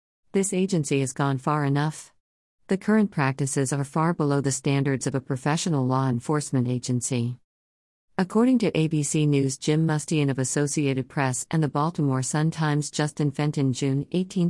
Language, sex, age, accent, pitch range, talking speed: English, female, 50-69, American, 135-155 Hz, 155 wpm